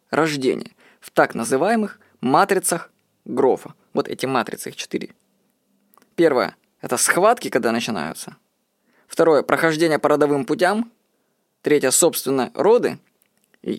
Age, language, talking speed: 20-39, Russian, 110 wpm